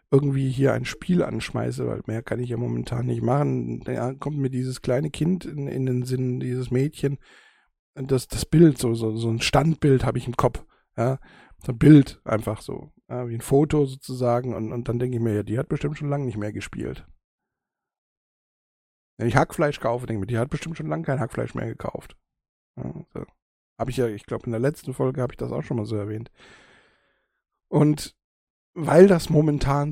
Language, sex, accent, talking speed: German, male, German, 210 wpm